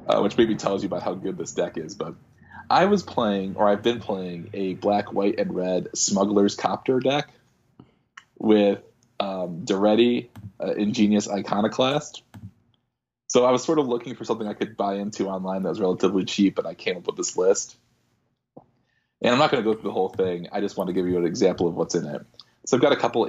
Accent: American